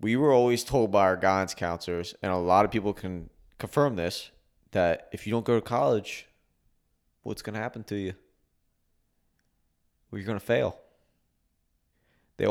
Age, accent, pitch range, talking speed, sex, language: 20-39, American, 85-110 Hz, 170 wpm, male, English